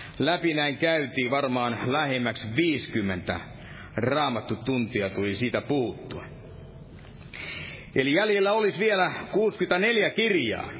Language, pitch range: Finnish, 125-160 Hz